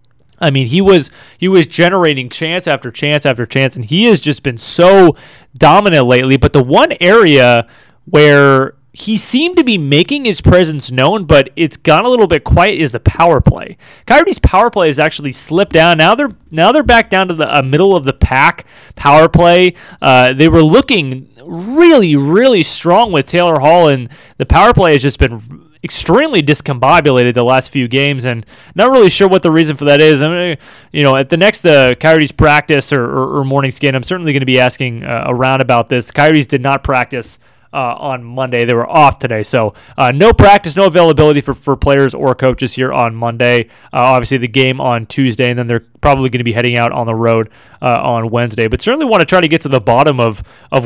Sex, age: male, 30-49